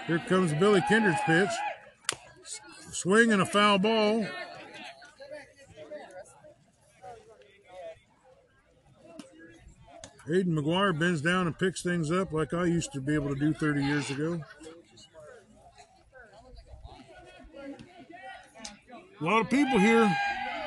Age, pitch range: 50-69, 180-230 Hz